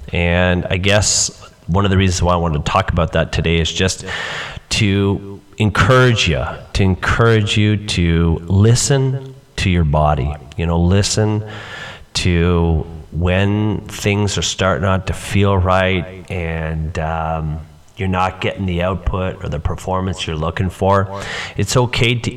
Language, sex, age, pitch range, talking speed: English, male, 30-49, 90-110 Hz, 150 wpm